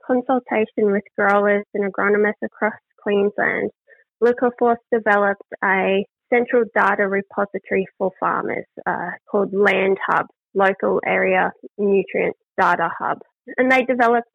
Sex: female